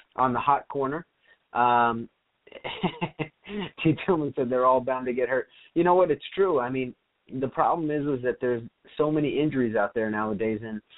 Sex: male